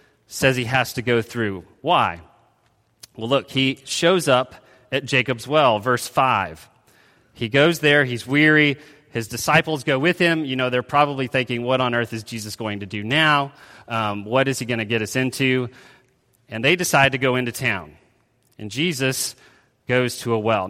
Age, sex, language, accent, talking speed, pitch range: 30-49, male, English, American, 185 wpm, 120-145 Hz